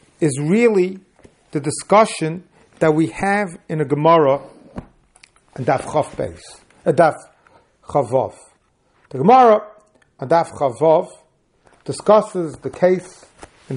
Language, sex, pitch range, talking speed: English, male, 145-185 Hz, 85 wpm